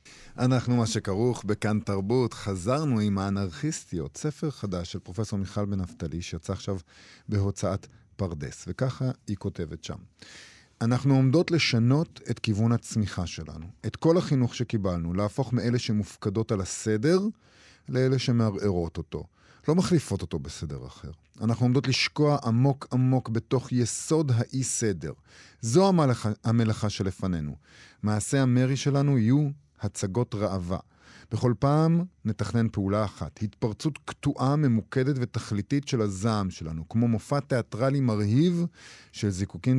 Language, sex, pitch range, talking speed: Hebrew, male, 100-130 Hz, 125 wpm